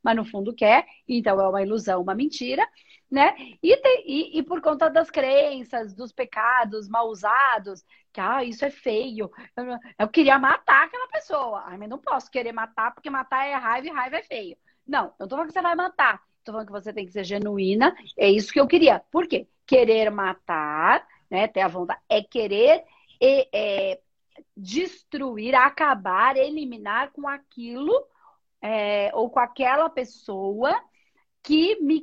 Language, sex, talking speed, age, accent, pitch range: Portuguese, female, 175 wpm, 40-59, Brazilian, 225-320 Hz